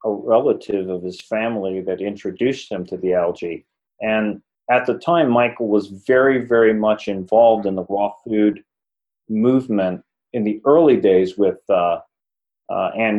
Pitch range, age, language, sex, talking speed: 100-115 Hz, 40-59, English, male, 155 wpm